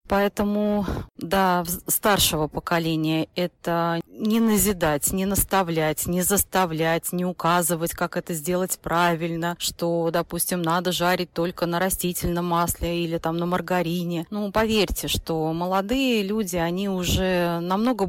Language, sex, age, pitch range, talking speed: Russian, female, 30-49, 165-195 Hz, 125 wpm